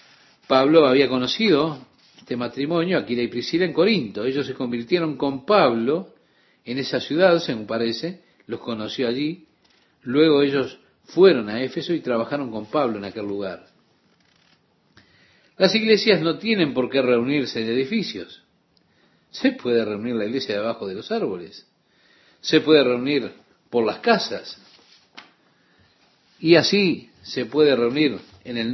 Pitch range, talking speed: 120-155 Hz, 140 wpm